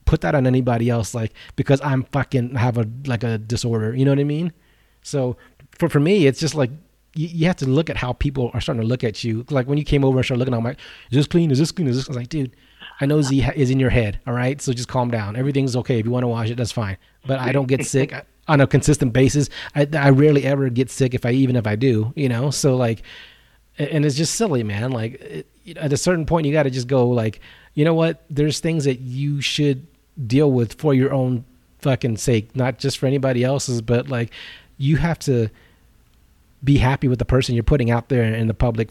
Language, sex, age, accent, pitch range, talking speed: English, male, 30-49, American, 120-150 Hz, 255 wpm